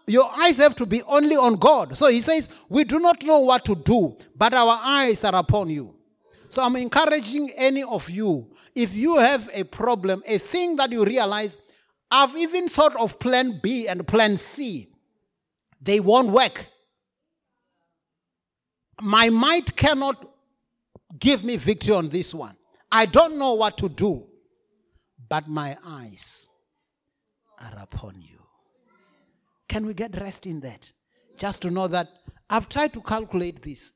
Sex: male